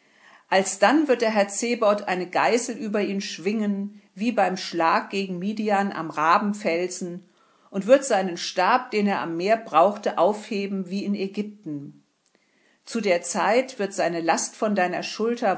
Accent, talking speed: German, 155 wpm